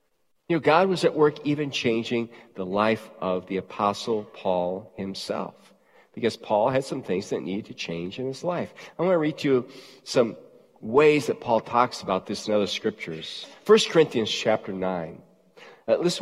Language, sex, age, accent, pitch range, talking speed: English, male, 40-59, American, 130-220 Hz, 180 wpm